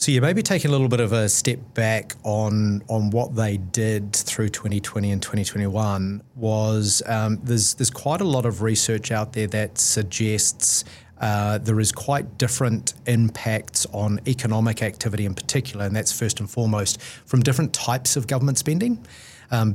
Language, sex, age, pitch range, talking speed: English, male, 30-49, 105-125 Hz, 170 wpm